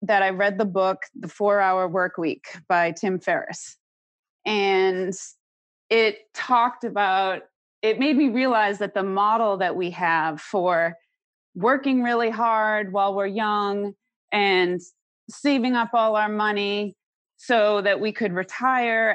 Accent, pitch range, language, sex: American, 200-275 Hz, English, female